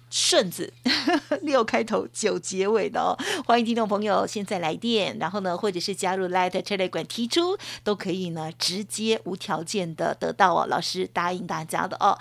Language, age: Chinese, 50-69